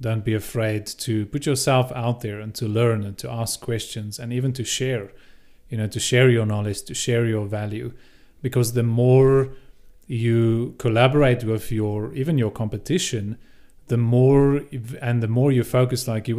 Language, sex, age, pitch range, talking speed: English, male, 30-49, 115-135 Hz, 175 wpm